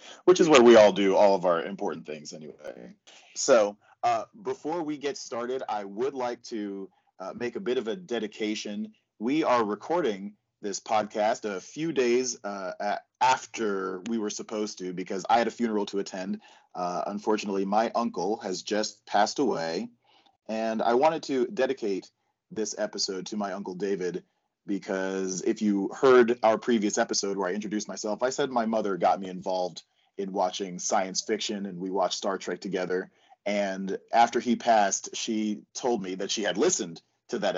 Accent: American